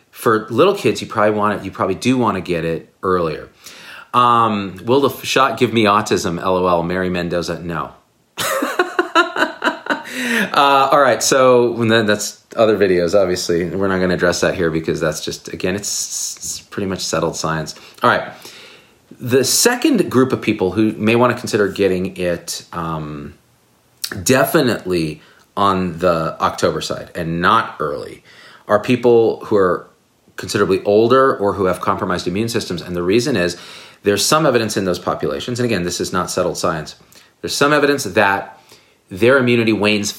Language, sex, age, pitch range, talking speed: English, male, 40-59, 90-120 Hz, 165 wpm